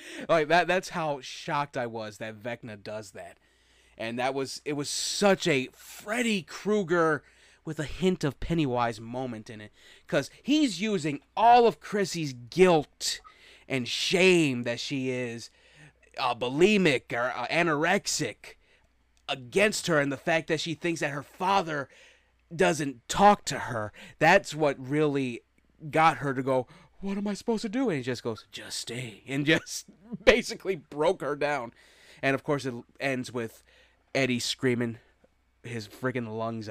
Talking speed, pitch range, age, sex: 160 wpm, 120-165 Hz, 30-49, male